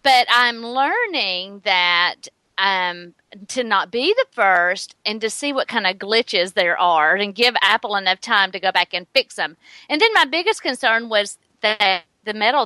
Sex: female